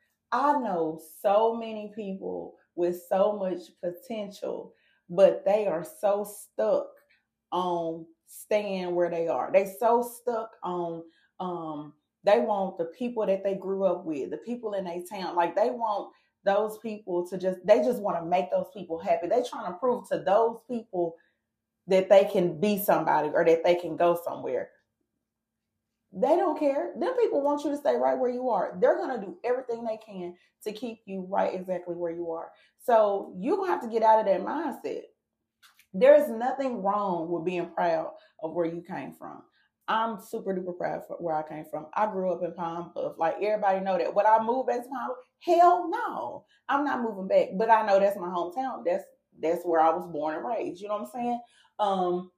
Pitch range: 175-235 Hz